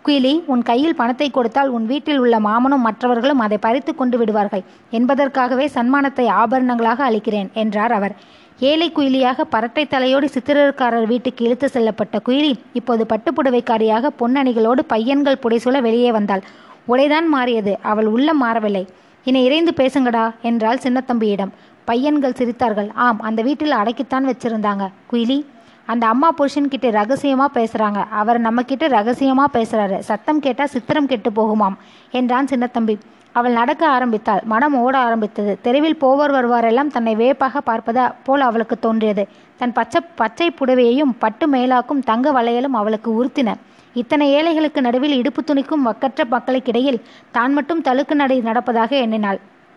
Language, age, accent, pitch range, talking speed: Tamil, 20-39, native, 225-275 Hz, 135 wpm